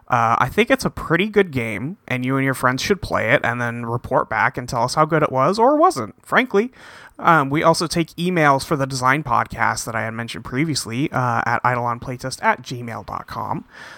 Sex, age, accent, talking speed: male, 30-49, American, 210 wpm